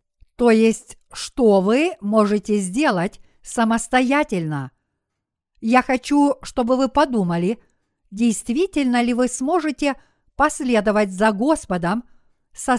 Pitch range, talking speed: 215-275 Hz, 95 wpm